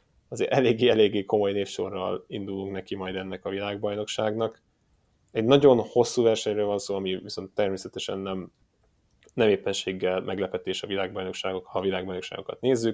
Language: Hungarian